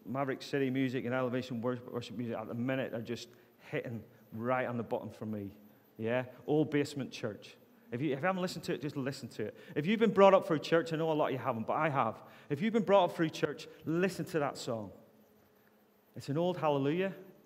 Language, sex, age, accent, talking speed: English, male, 30-49, British, 230 wpm